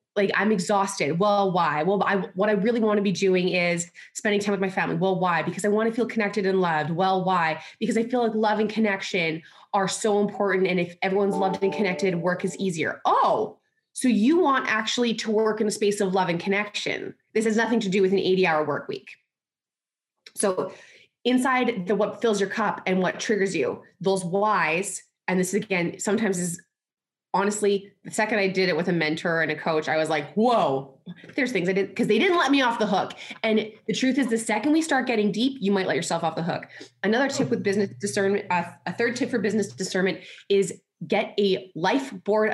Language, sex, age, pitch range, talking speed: English, female, 20-39, 185-220 Hz, 220 wpm